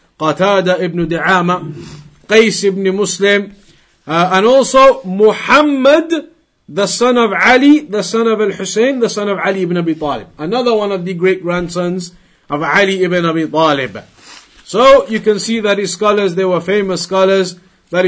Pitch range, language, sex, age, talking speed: 180-225 Hz, English, male, 50-69, 165 wpm